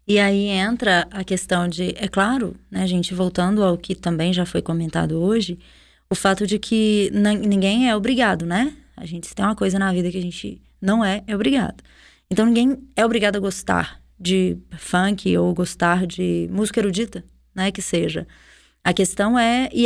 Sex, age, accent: female, 20-39, Brazilian